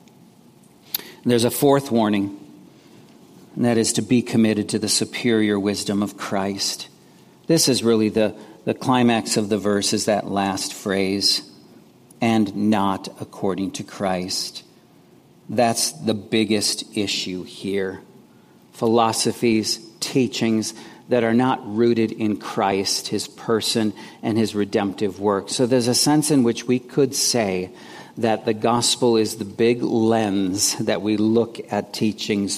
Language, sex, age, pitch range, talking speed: English, male, 50-69, 100-115 Hz, 135 wpm